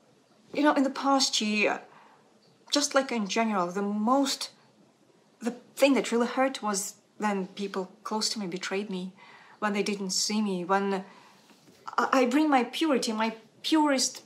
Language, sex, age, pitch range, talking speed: English, female, 40-59, 210-255 Hz, 155 wpm